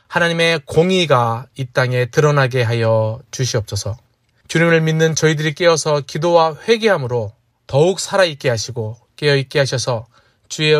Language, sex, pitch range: Korean, male, 120-165 Hz